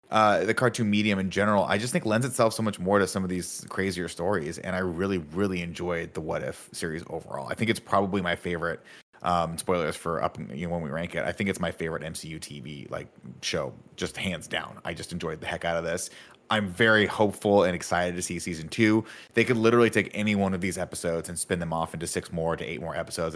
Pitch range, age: 85-105 Hz, 30-49